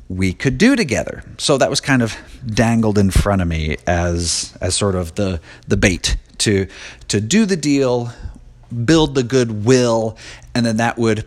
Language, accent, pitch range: English, American, 90-120 Hz